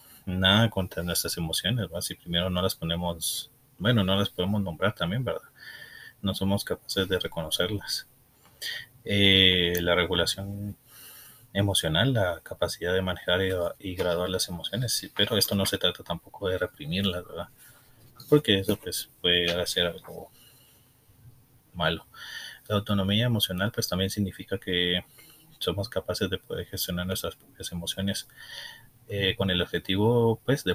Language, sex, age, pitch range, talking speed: Spanish, male, 30-49, 90-115 Hz, 140 wpm